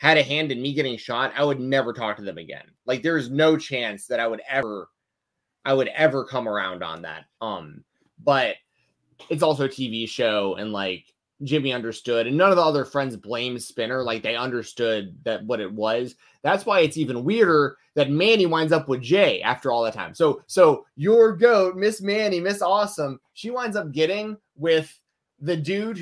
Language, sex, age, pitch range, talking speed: English, male, 20-39, 130-180 Hz, 195 wpm